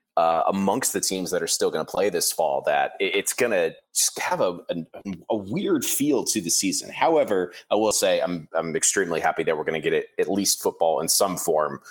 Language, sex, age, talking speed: English, male, 30-49, 225 wpm